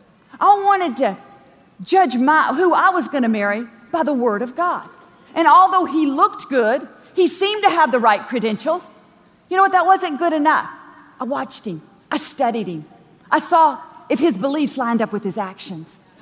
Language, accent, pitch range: English, American, 245-355 Hz